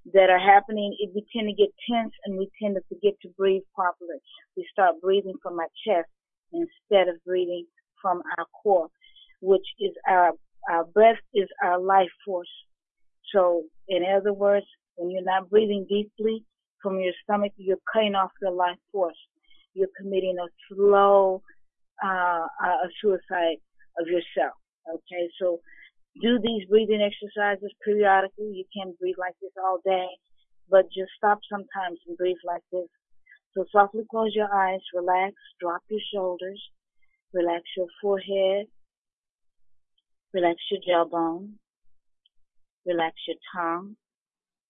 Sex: female